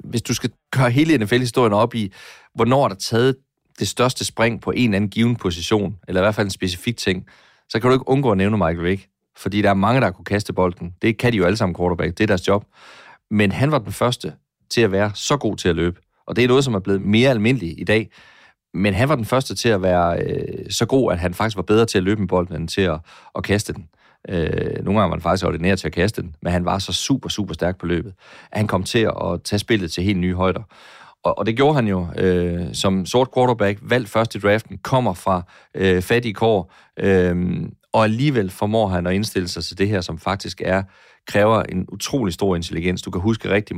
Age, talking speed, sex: 30-49, 250 wpm, male